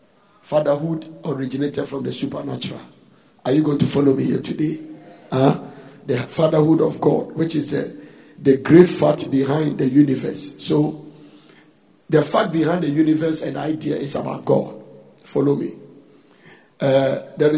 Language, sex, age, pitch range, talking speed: English, male, 50-69, 145-170 Hz, 140 wpm